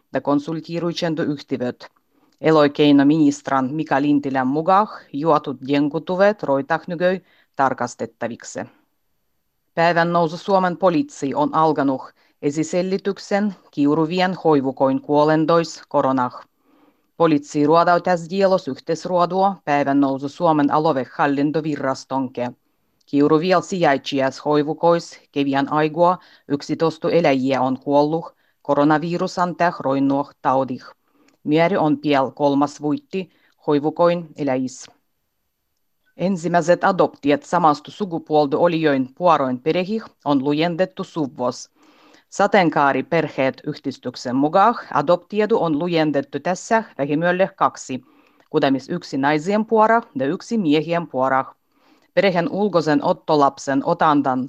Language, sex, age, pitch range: Finnish, female, 30-49, 140-180 Hz